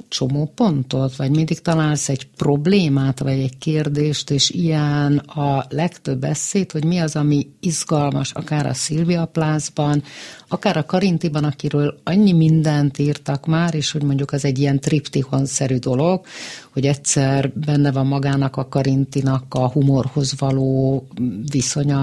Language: Hungarian